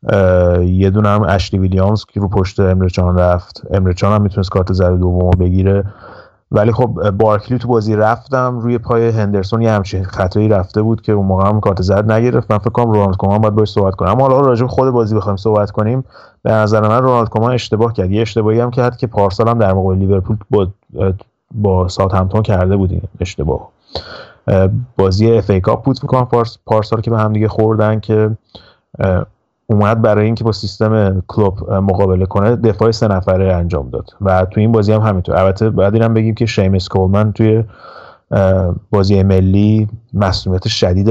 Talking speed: 180 wpm